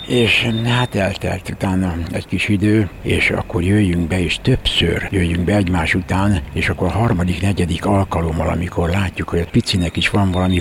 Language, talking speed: Hungarian, 170 wpm